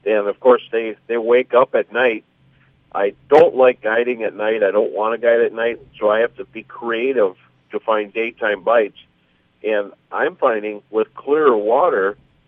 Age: 50-69